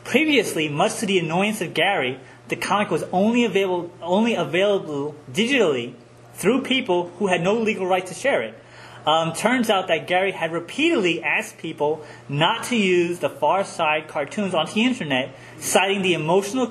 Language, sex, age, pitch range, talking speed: English, male, 30-49, 155-210 Hz, 170 wpm